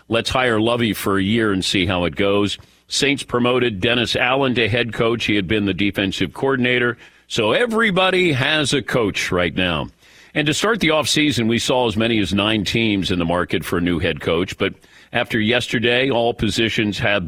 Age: 50-69